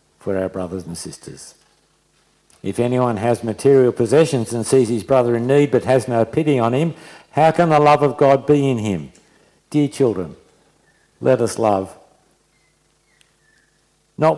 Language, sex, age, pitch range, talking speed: English, male, 60-79, 110-145 Hz, 155 wpm